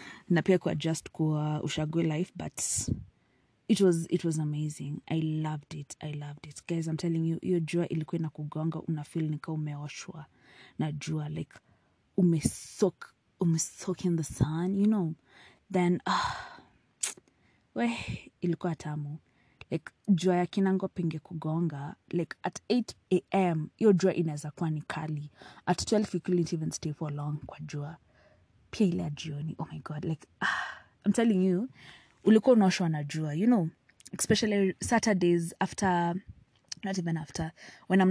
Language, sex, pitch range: English, female, 155-190 Hz